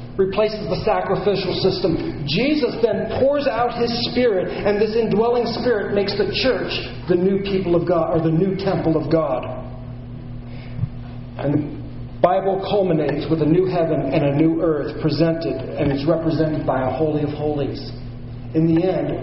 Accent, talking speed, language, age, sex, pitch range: American, 160 wpm, English, 40-59, male, 135-205 Hz